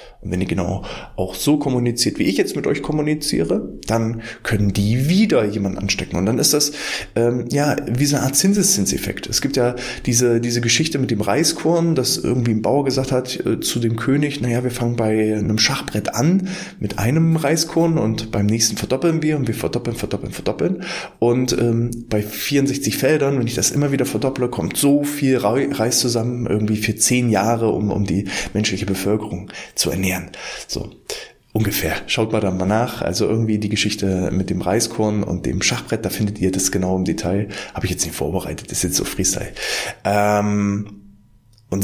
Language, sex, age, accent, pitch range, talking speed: German, male, 20-39, German, 105-140 Hz, 190 wpm